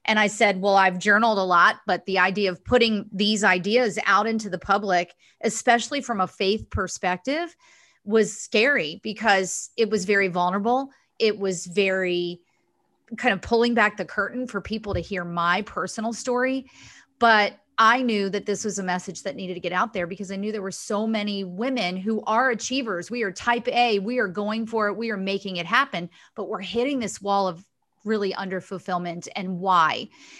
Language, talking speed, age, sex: English, 190 wpm, 30-49, female